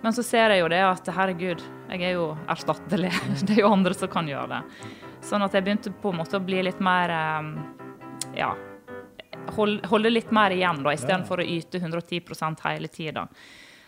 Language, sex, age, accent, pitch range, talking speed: English, female, 20-39, Swedish, 160-205 Hz, 195 wpm